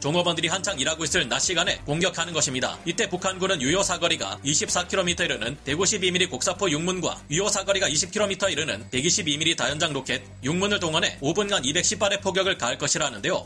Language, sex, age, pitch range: Korean, male, 30-49, 155-195 Hz